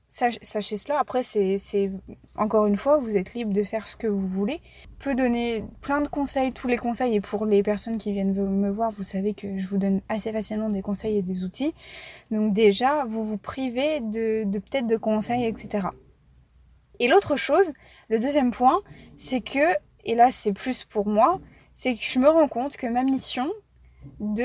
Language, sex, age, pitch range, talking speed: French, female, 20-39, 210-255 Hz, 200 wpm